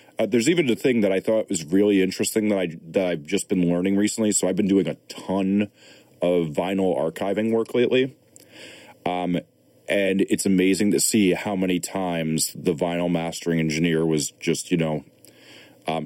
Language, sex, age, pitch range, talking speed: English, male, 30-49, 85-100 Hz, 175 wpm